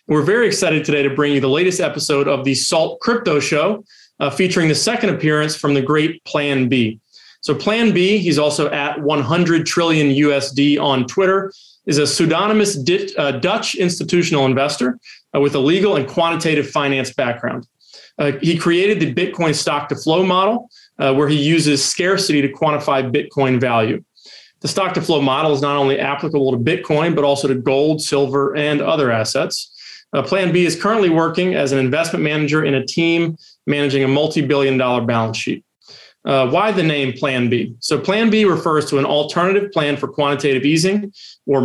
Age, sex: 30-49, male